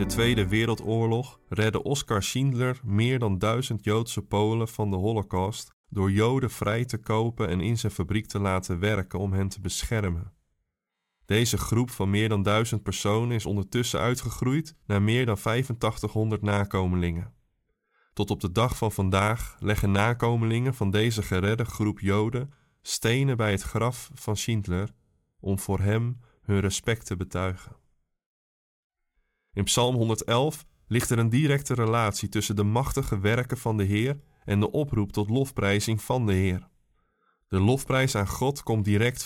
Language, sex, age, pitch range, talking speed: Dutch, male, 20-39, 100-120 Hz, 155 wpm